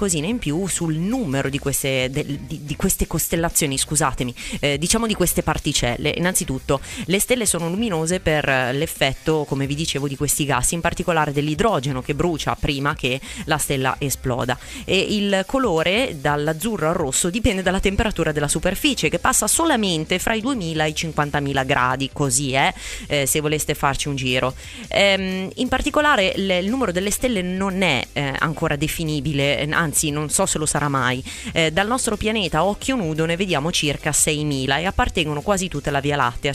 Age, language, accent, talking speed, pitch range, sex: 20-39, Italian, native, 175 wpm, 145-200 Hz, female